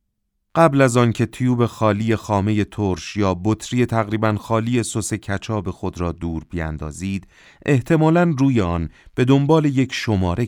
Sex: male